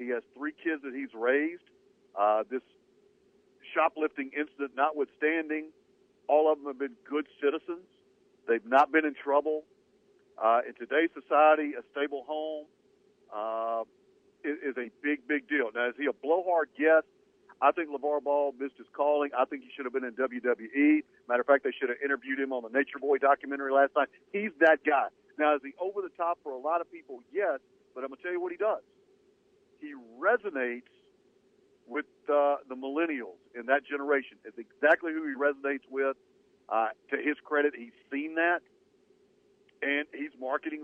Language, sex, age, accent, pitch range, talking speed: English, male, 50-69, American, 140-195 Hz, 180 wpm